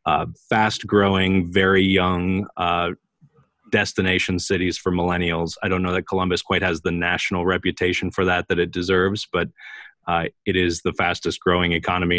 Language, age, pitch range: English, 30-49, 85-95 Hz